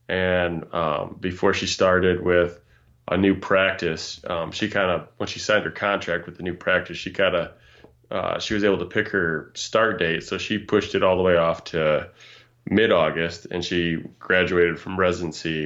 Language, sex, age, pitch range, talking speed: English, male, 20-39, 85-105 Hz, 185 wpm